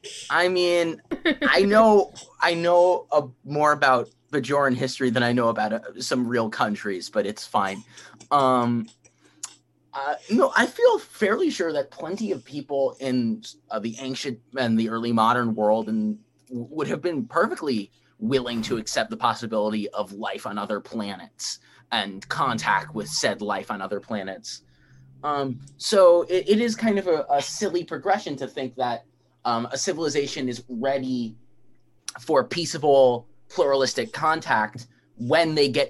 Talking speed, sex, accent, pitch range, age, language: 155 wpm, male, American, 115-150 Hz, 20-39, English